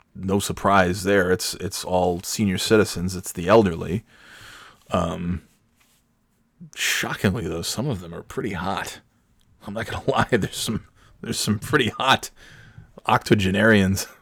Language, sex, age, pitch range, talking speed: English, male, 20-39, 90-105 Hz, 130 wpm